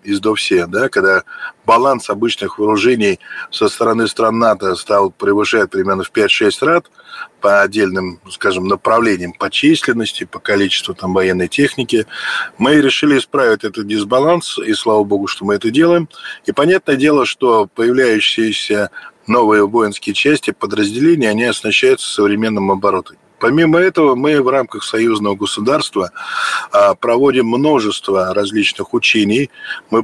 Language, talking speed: Russian, 130 wpm